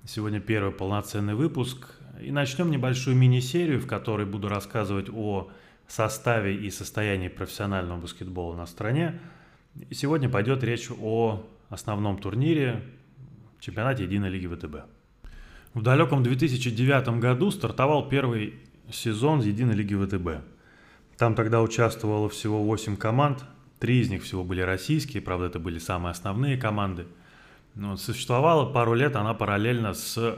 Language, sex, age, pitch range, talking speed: Russian, male, 20-39, 95-125 Hz, 130 wpm